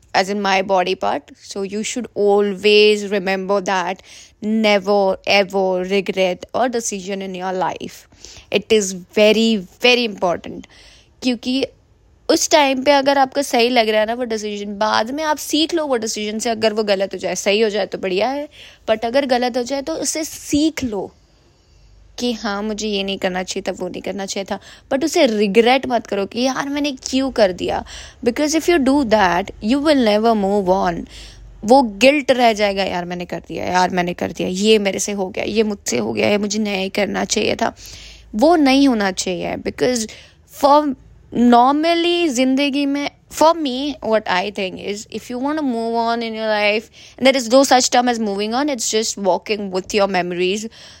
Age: 20-39